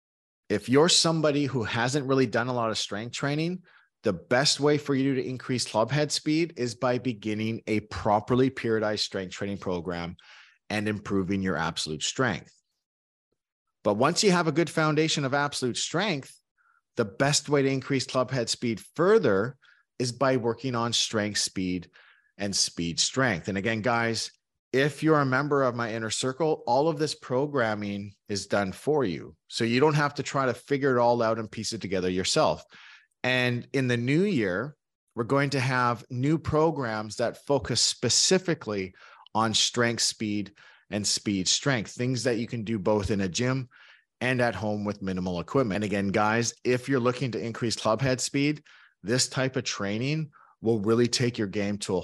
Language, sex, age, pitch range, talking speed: English, male, 30-49, 105-135 Hz, 180 wpm